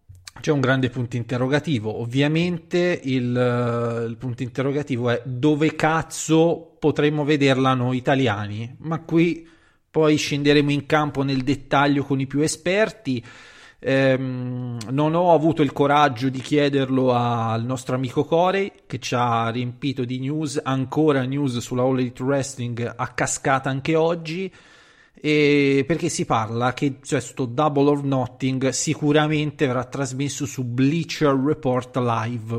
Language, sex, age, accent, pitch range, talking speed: Italian, male, 30-49, native, 125-150 Hz, 135 wpm